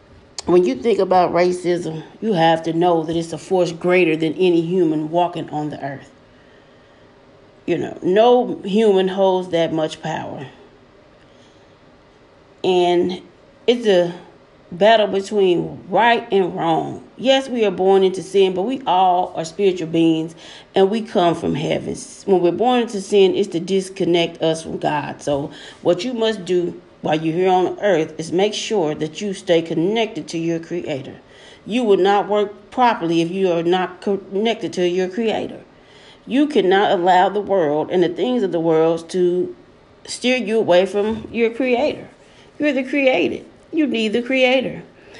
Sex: female